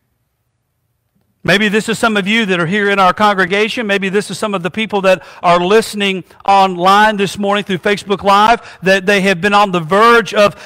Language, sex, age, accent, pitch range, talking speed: English, male, 50-69, American, 180-230 Hz, 205 wpm